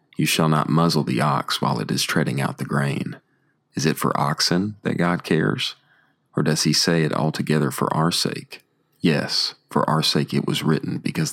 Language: English